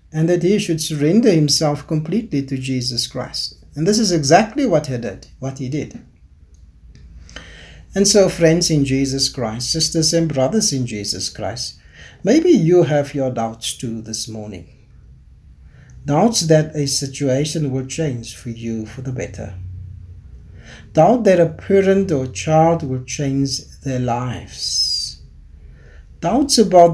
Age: 60-79